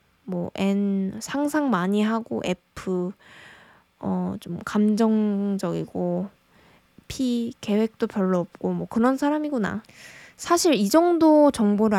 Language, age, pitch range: Korean, 20-39, 195-250 Hz